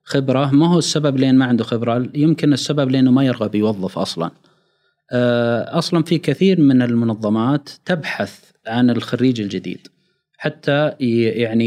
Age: 30-49